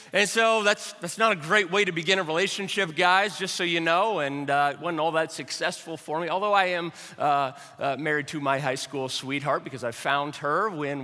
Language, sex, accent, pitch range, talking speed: English, male, American, 175-240 Hz, 230 wpm